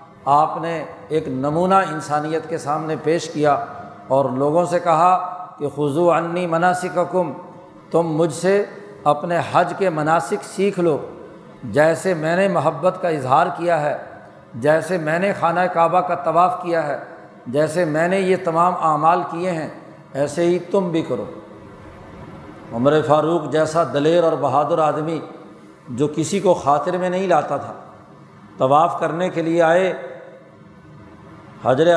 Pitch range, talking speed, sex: 155-180 Hz, 150 wpm, male